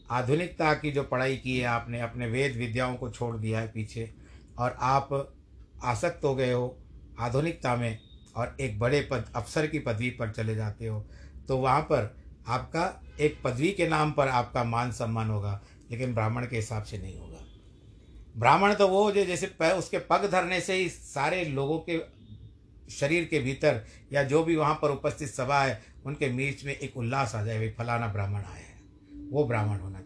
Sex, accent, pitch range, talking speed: male, native, 105-145 Hz, 185 wpm